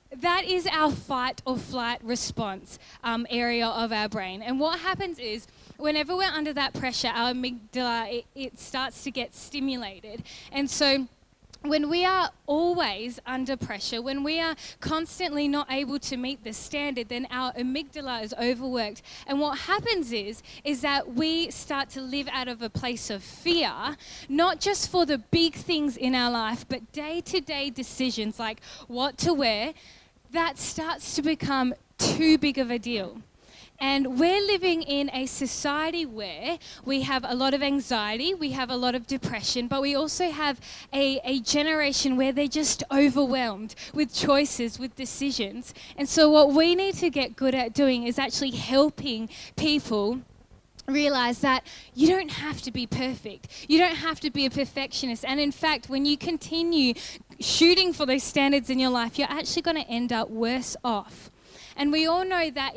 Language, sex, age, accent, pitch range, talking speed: English, female, 10-29, Australian, 245-305 Hz, 175 wpm